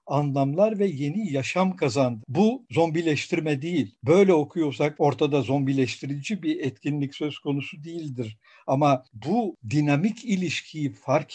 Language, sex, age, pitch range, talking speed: Turkish, male, 60-79, 135-190 Hz, 115 wpm